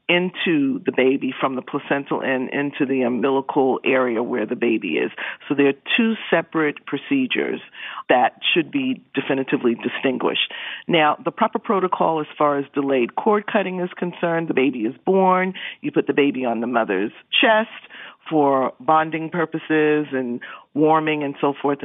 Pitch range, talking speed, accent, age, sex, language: 135-165 Hz, 160 wpm, American, 50-69, female, English